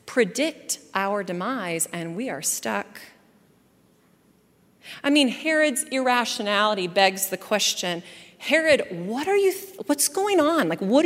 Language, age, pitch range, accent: English, 40-59, 205-295 Hz, American